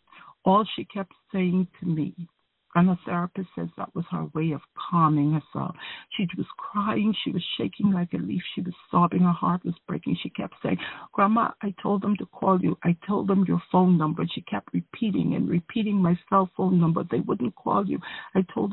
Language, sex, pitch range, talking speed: English, female, 160-195 Hz, 205 wpm